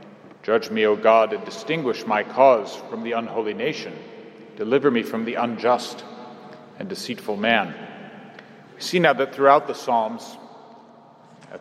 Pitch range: 120-155 Hz